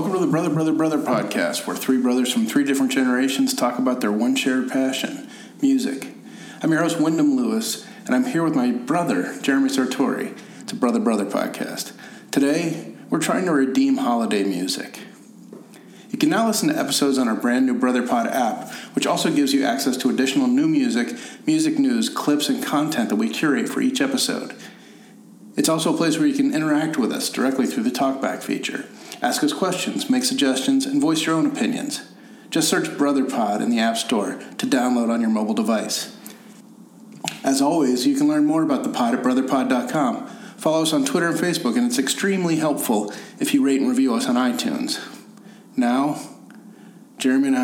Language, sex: English, male